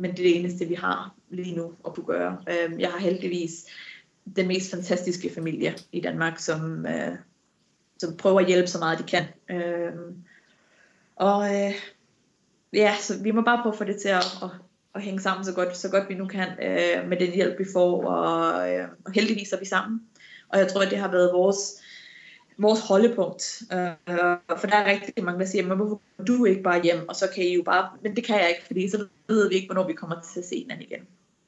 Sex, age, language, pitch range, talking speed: female, 20-39, Danish, 175-200 Hz, 210 wpm